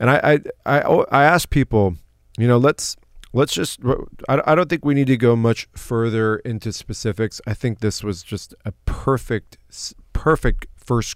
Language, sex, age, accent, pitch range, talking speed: English, male, 30-49, American, 95-120 Hz, 170 wpm